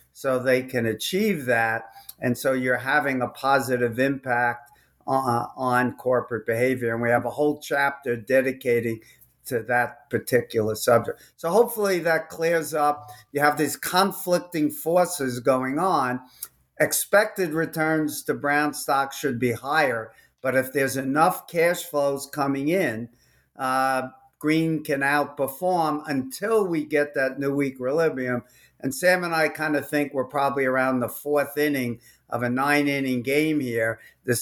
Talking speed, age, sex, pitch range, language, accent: 150 wpm, 50-69, male, 125-150 Hz, English, American